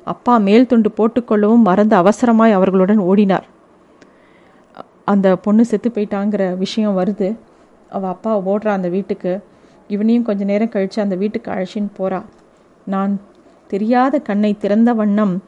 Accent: native